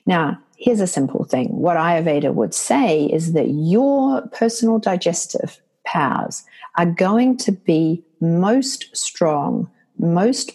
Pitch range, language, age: 165-230 Hz, English, 50-69